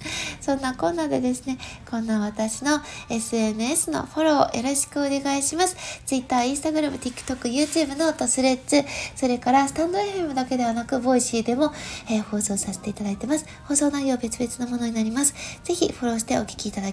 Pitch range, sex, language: 220-285 Hz, female, Japanese